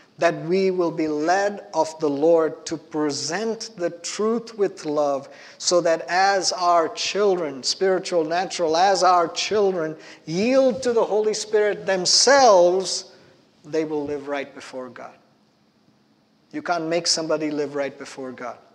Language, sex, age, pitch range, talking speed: English, male, 50-69, 145-175 Hz, 140 wpm